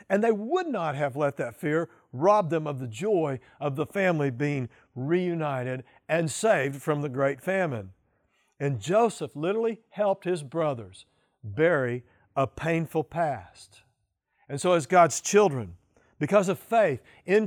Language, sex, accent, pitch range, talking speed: English, male, American, 145-200 Hz, 150 wpm